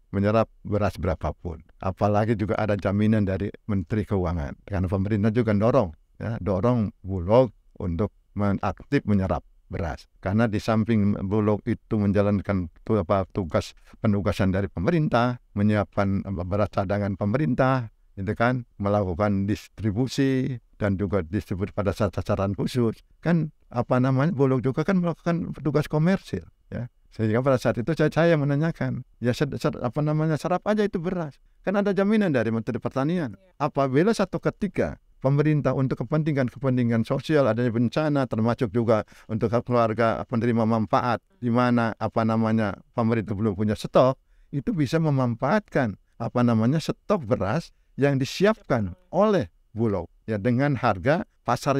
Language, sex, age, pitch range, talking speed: Indonesian, male, 60-79, 105-135 Hz, 130 wpm